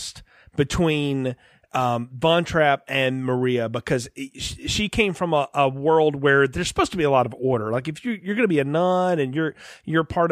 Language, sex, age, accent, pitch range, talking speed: English, male, 30-49, American, 135-180 Hz, 200 wpm